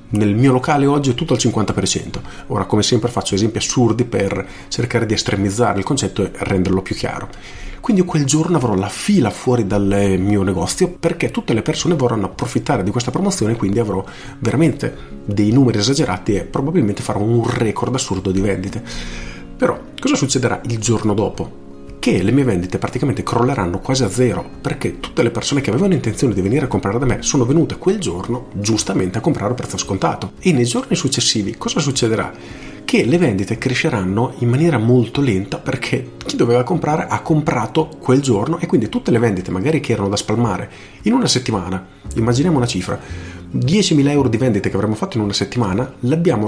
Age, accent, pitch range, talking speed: 40-59, native, 100-135 Hz, 185 wpm